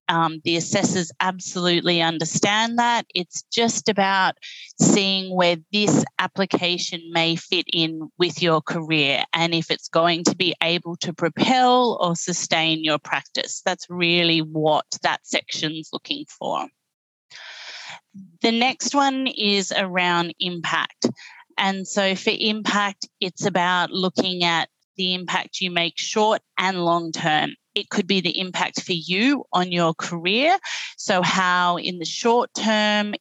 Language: English